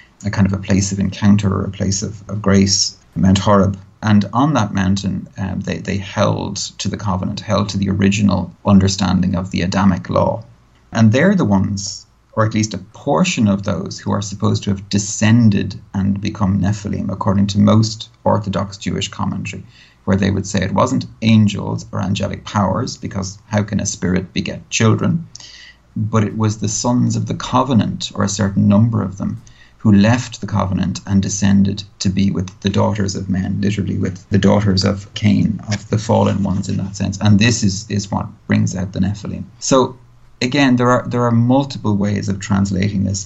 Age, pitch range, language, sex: 30-49, 100-110 Hz, English, male